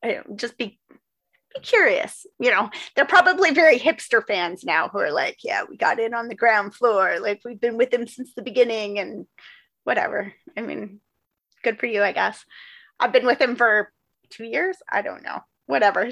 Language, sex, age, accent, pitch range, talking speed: English, female, 30-49, American, 195-285 Hz, 195 wpm